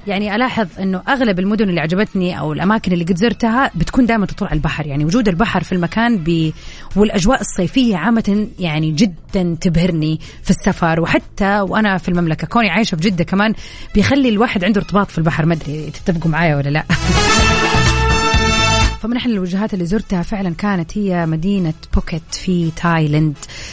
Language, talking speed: Arabic, 160 wpm